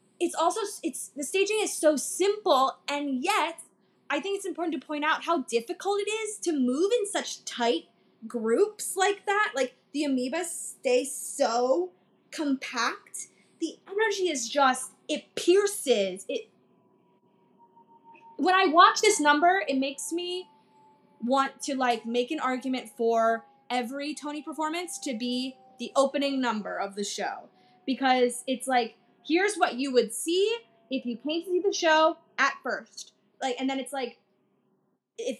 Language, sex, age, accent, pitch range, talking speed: English, female, 10-29, American, 245-330 Hz, 155 wpm